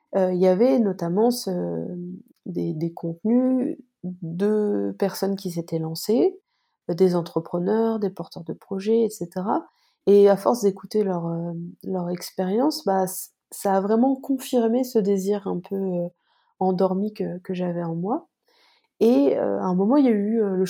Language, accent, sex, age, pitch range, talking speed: French, French, female, 30-49, 180-225 Hz, 165 wpm